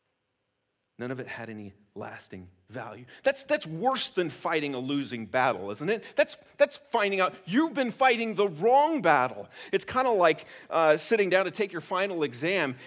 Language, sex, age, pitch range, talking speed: English, male, 40-59, 125-190 Hz, 180 wpm